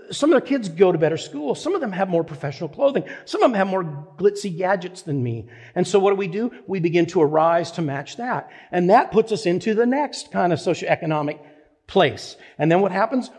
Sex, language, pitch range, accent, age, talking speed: male, English, 140-190 Hz, American, 50-69, 235 wpm